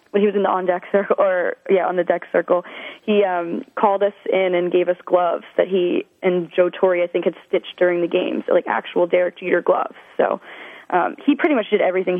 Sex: female